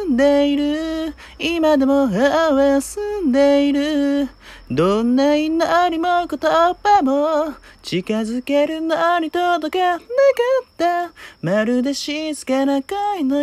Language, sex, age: Japanese, male, 30-49